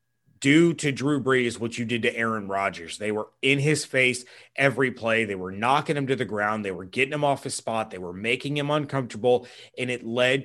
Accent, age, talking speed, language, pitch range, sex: American, 30-49, 225 wpm, English, 120-145 Hz, male